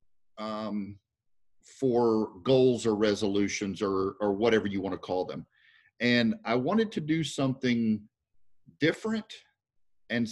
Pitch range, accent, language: 100-125 Hz, American, English